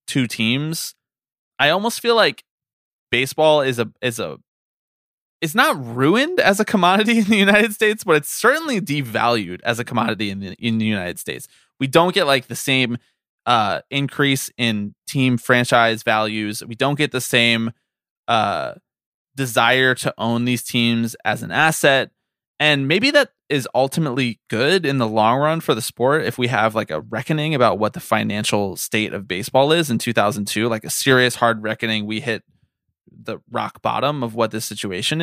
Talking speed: 175 wpm